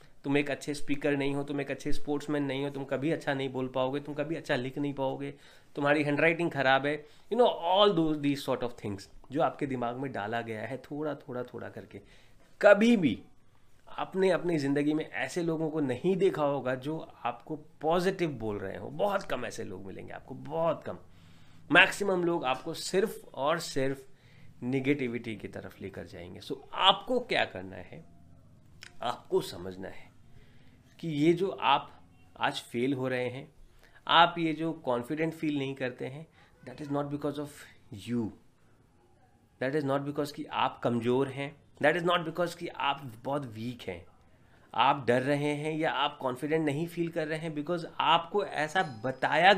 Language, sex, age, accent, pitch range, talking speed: Hindi, male, 30-49, native, 125-160 Hz, 180 wpm